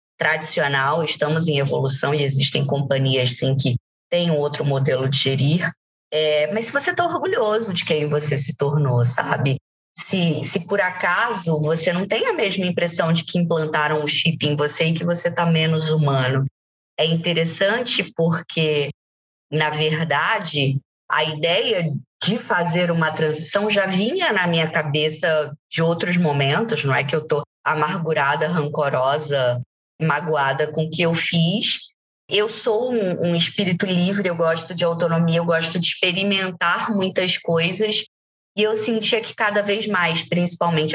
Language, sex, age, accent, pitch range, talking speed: Portuguese, female, 20-39, Brazilian, 150-185 Hz, 150 wpm